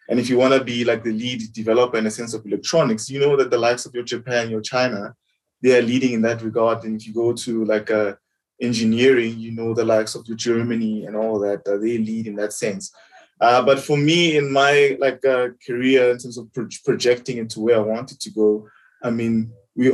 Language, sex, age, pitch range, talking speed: English, male, 20-39, 115-130 Hz, 235 wpm